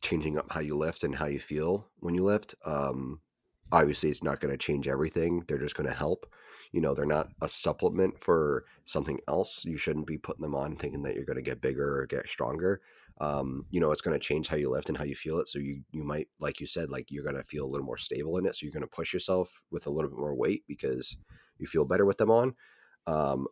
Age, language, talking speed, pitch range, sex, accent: 30-49, English, 265 wpm, 70-90 Hz, male, American